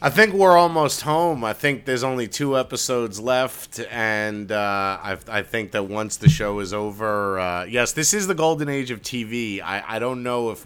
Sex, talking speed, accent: male, 210 wpm, American